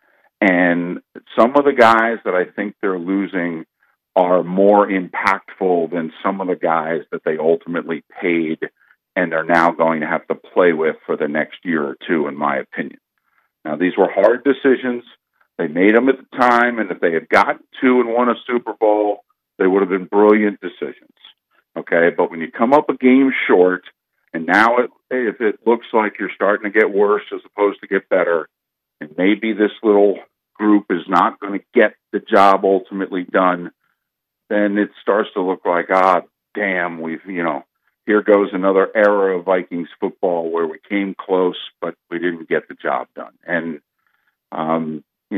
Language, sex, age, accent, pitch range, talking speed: English, male, 50-69, American, 90-110 Hz, 180 wpm